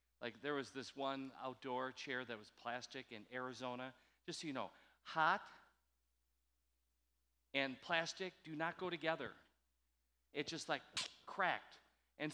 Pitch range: 105-175 Hz